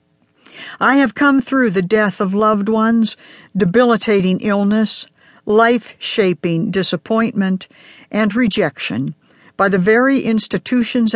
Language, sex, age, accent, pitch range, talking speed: English, female, 60-79, American, 185-230 Hz, 100 wpm